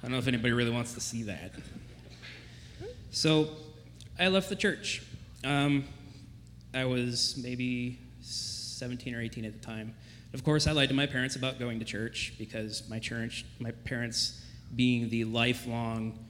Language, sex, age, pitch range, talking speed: English, male, 20-39, 110-130 Hz, 160 wpm